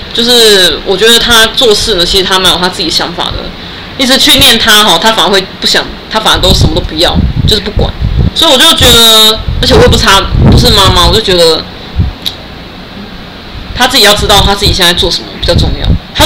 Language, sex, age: Chinese, female, 20-39